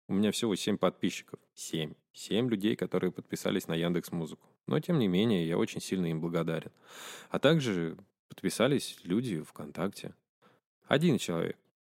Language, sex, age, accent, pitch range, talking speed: Russian, male, 20-39, native, 85-110 Hz, 145 wpm